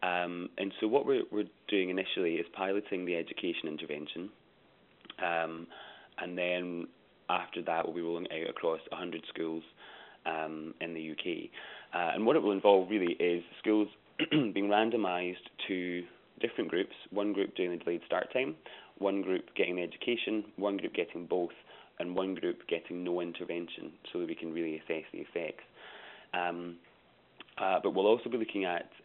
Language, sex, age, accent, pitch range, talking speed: English, male, 30-49, British, 85-95 Hz, 170 wpm